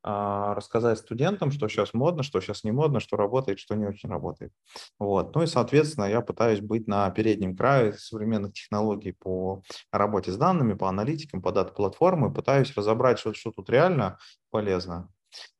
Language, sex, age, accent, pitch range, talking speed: Russian, male, 20-39, native, 110-165 Hz, 160 wpm